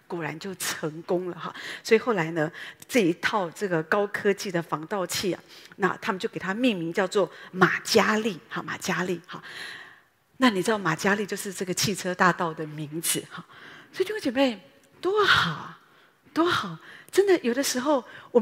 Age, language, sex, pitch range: 40-59, Chinese, female, 175-240 Hz